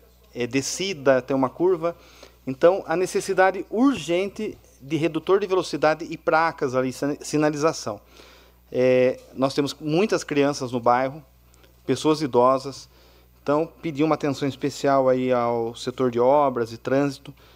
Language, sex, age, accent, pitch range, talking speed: Portuguese, male, 30-49, Brazilian, 130-155 Hz, 120 wpm